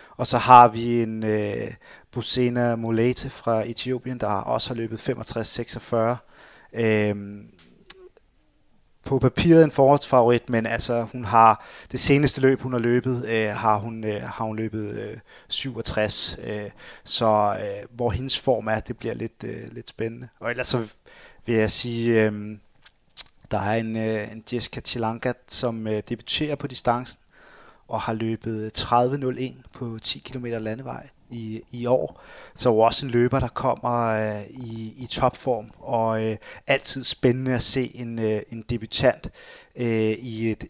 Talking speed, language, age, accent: 155 wpm, Danish, 30-49, native